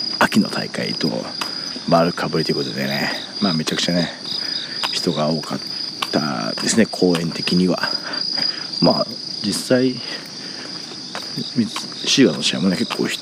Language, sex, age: Japanese, male, 40-59